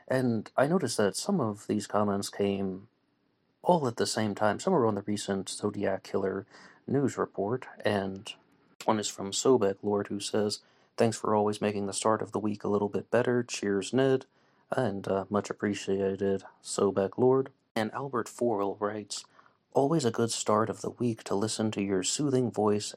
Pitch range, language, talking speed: 100-110 Hz, English, 180 wpm